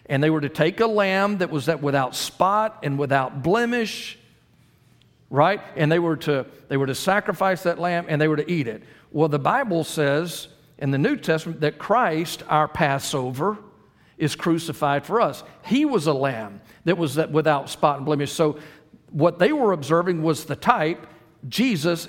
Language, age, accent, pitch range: English, 50-69, American, 150-210 Hz